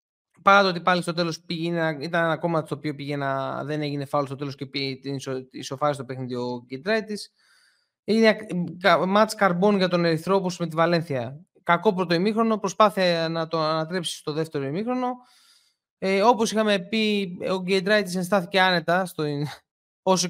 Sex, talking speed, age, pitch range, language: male, 165 wpm, 20-39, 145-185 Hz, Greek